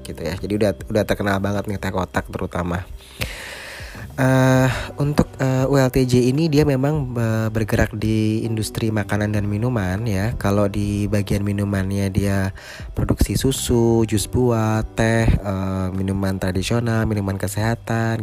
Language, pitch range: Indonesian, 95-115 Hz